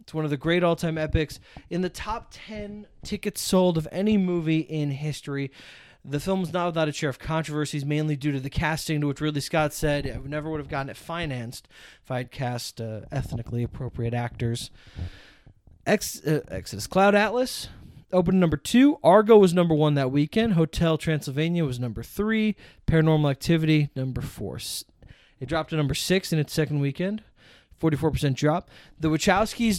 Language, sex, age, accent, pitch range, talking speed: English, male, 20-39, American, 140-185 Hz, 175 wpm